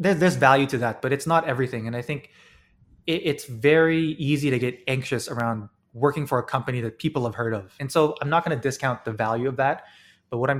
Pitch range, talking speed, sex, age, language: 120-145 Hz, 240 wpm, male, 20-39, English